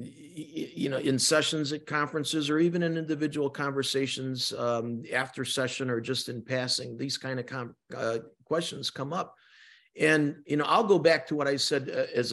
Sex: male